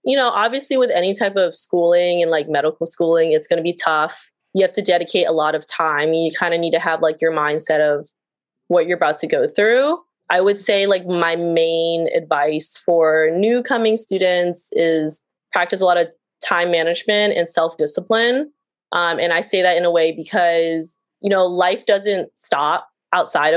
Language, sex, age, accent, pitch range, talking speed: English, female, 20-39, American, 170-220 Hz, 190 wpm